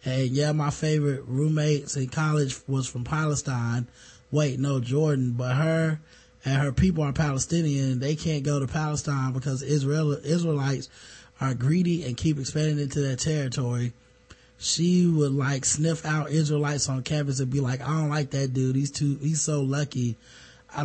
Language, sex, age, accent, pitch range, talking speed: English, male, 20-39, American, 130-150 Hz, 165 wpm